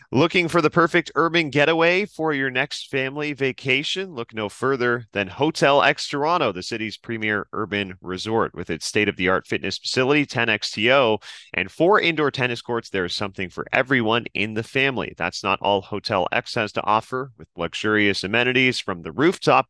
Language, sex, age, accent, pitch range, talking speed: English, male, 30-49, American, 95-130 Hz, 175 wpm